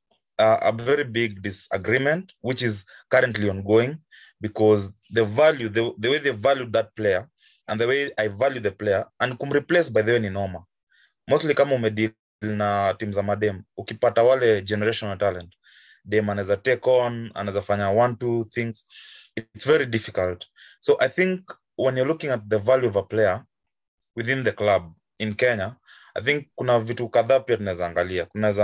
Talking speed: 170 wpm